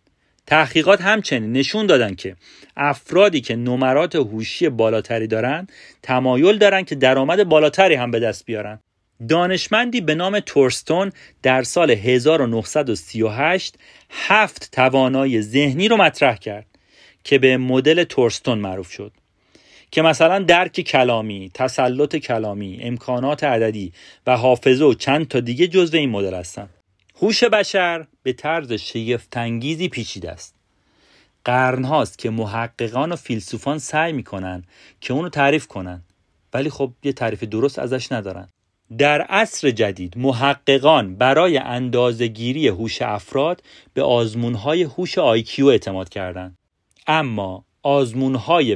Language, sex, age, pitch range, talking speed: Persian, male, 40-59, 110-150 Hz, 125 wpm